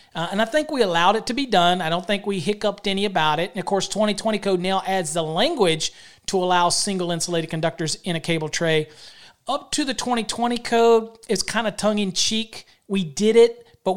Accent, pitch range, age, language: American, 170-210 Hz, 40-59, English